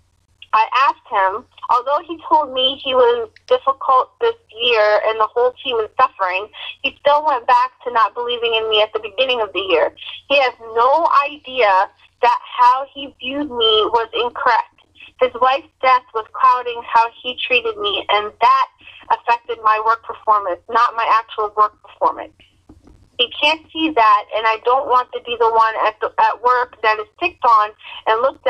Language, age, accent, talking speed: English, 30-49, American, 180 wpm